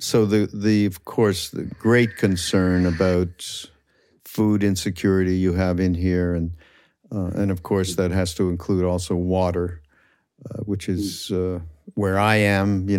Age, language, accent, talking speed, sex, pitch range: 50-69, English, American, 155 wpm, male, 95-115 Hz